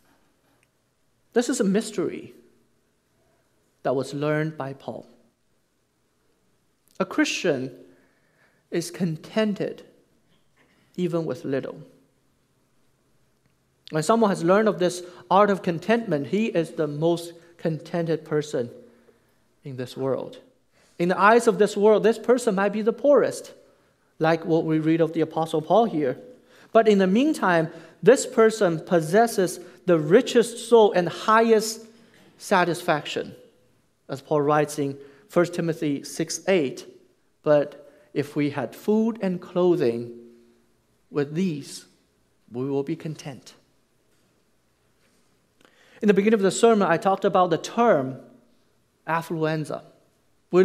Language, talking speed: English, 120 wpm